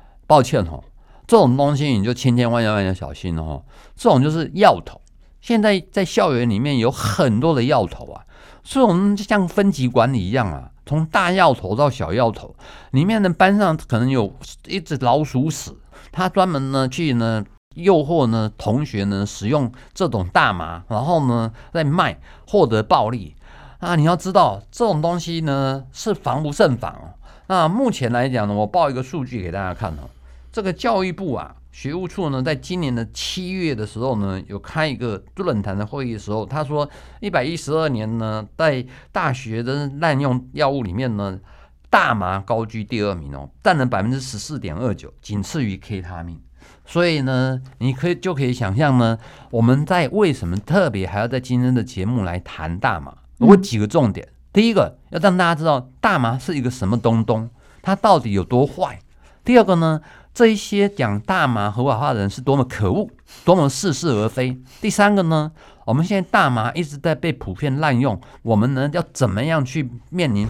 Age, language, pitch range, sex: 50-69, Chinese, 110-160 Hz, male